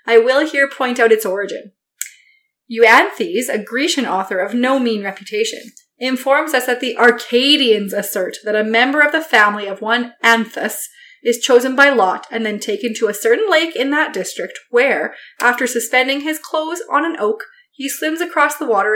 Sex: female